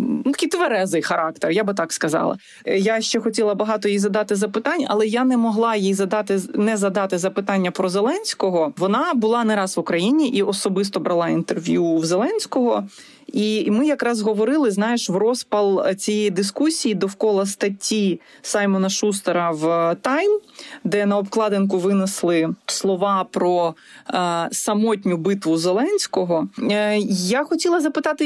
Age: 30-49